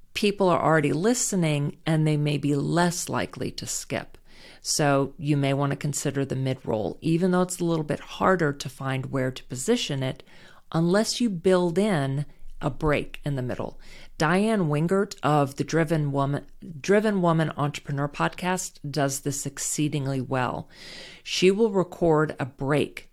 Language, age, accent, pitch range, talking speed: English, 40-59, American, 135-170 Hz, 155 wpm